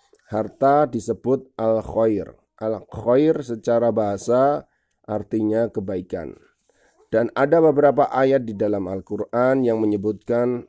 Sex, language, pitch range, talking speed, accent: male, Indonesian, 110-135 Hz, 95 wpm, native